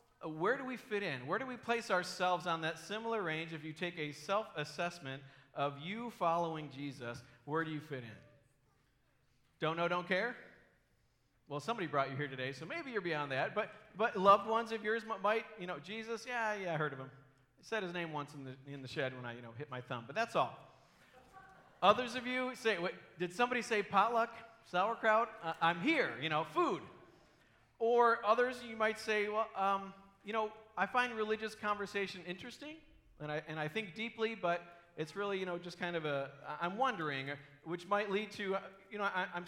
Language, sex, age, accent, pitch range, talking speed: English, male, 40-59, American, 155-210 Hz, 205 wpm